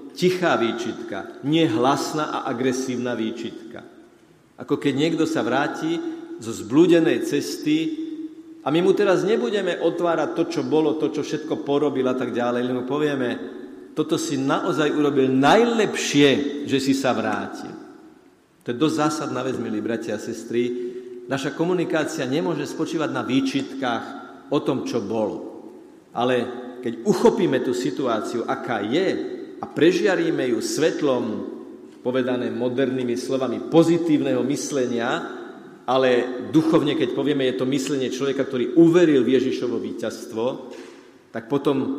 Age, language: 50-69, Slovak